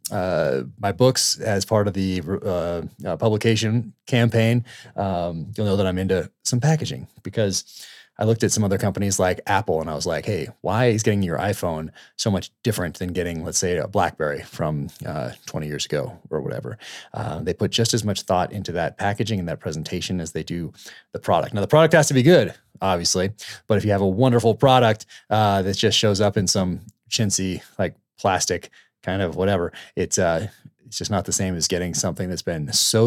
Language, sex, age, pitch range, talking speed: English, male, 30-49, 95-120 Hz, 205 wpm